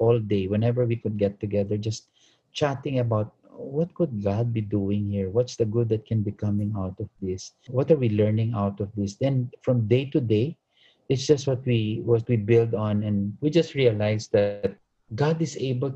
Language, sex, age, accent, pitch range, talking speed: English, male, 50-69, Filipino, 100-125 Hz, 205 wpm